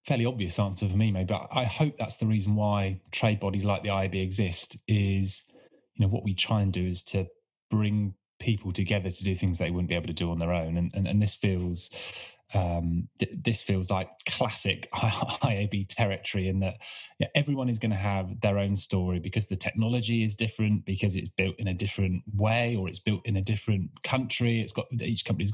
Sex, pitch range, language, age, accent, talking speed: male, 95-110 Hz, English, 20-39, British, 215 wpm